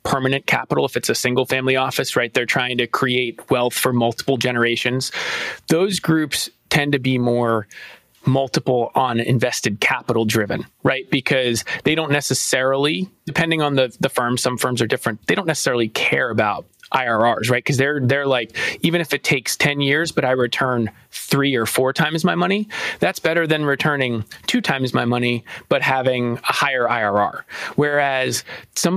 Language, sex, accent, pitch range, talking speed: English, male, American, 125-150 Hz, 170 wpm